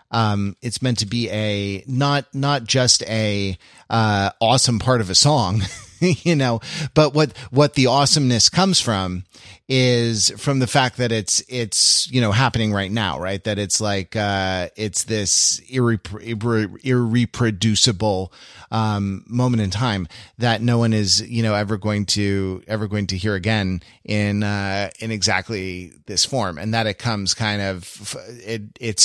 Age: 30-49